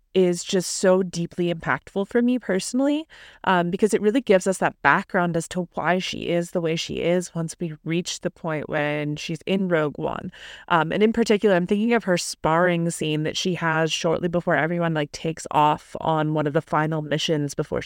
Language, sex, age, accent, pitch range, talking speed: English, female, 20-39, American, 165-190 Hz, 205 wpm